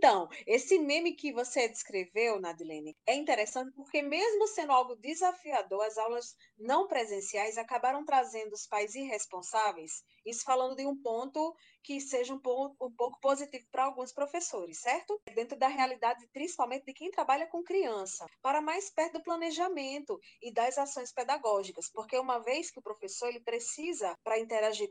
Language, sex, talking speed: Portuguese, female, 155 wpm